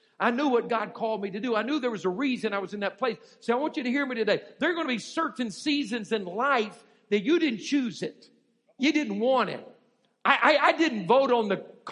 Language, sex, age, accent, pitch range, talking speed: English, male, 50-69, American, 205-255 Hz, 260 wpm